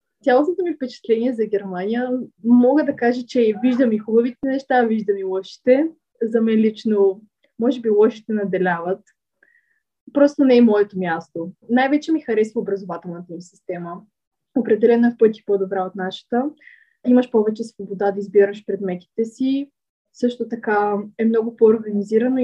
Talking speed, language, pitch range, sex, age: 140 wpm, Bulgarian, 200-240 Hz, female, 20-39